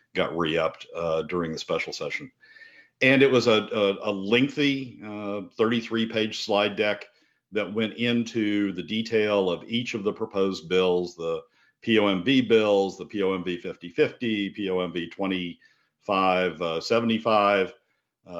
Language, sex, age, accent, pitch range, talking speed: English, male, 50-69, American, 90-120 Hz, 120 wpm